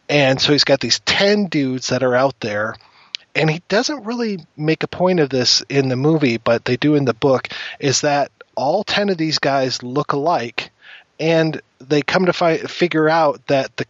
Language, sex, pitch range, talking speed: English, male, 125-155 Hz, 200 wpm